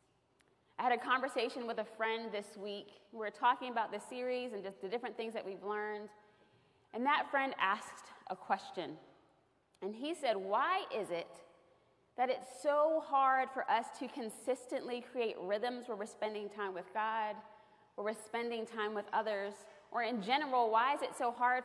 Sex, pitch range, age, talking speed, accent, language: female, 215-270 Hz, 20-39, 180 wpm, American, English